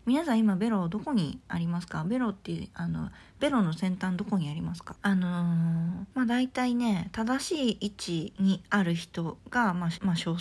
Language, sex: Japanese, female